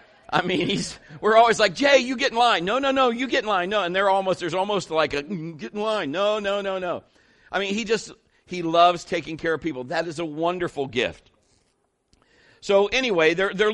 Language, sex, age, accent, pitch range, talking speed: English, male, 50-69, American, 165-210 Hz, 225 wpm